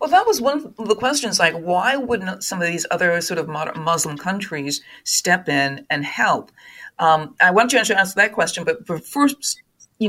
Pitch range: 160-210 Hz